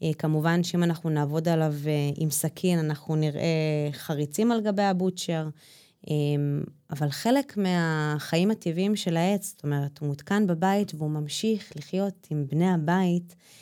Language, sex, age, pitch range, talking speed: Hebrew, female, 20-39, 150-195 Hz, 130 wpm